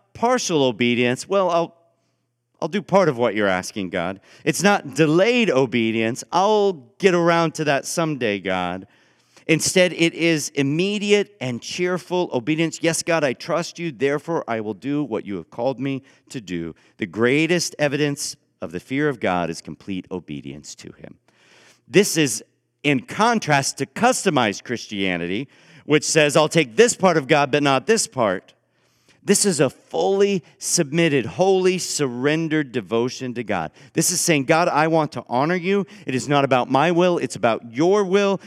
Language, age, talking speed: English, 50-69, 165 wpm